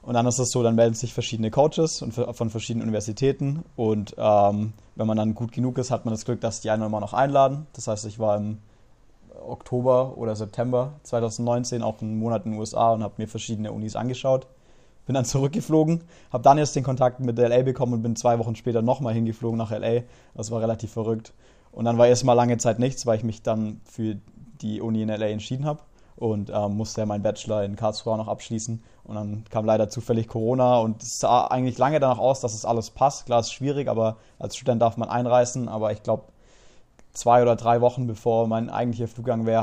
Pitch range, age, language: 110-125 Hz, 20-39, German